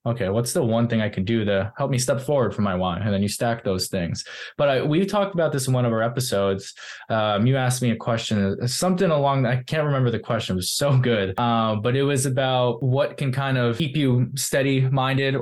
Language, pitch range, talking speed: English, 110-135 Hz, 245 wpm